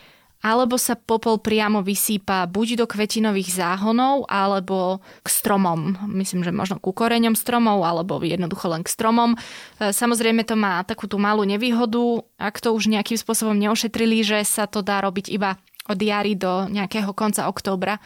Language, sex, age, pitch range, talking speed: Slovak, female, 20-39, 190-225 Hz, 160 wpm